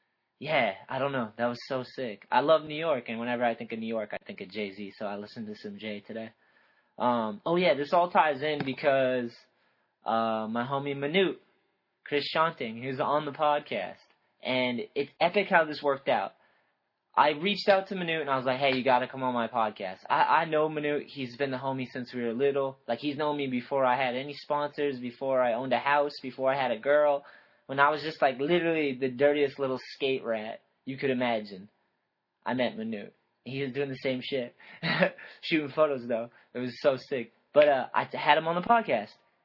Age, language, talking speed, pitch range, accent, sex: 20-39, English, 215 wpm, 130-160 Hz, American, male